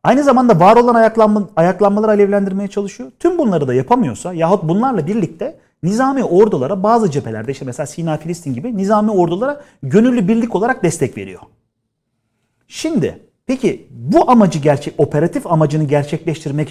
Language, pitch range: Turkish, 135-200 Hz